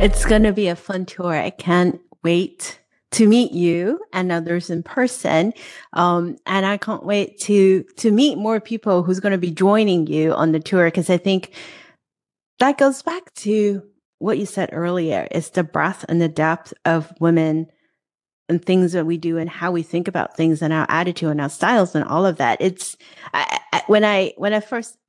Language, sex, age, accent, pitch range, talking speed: English, female, 30-49, American, 170-205 Hz, 195 wpm